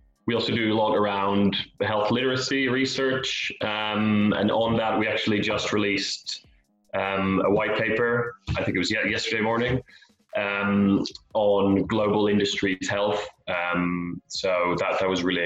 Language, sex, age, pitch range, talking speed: English, male, 20-39, 95-110 Hz, 150 wpm